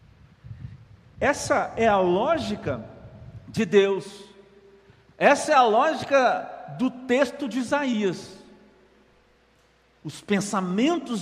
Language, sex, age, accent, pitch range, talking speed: Portuguese, male, 50-69, Brazilian, 160-240 Hz, 85 wpm